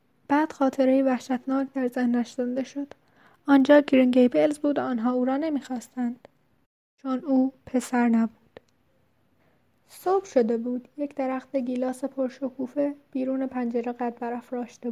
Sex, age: female, 10-29